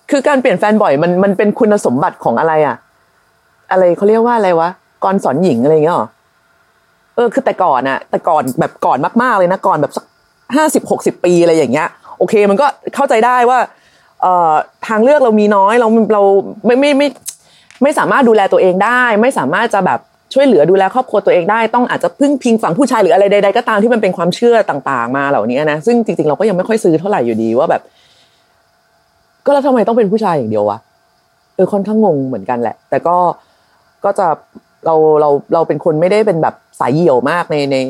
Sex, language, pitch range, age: female, Thai, 150-225 Hz, 20-39